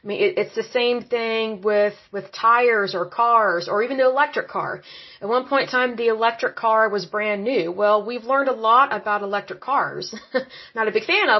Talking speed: 210 wpm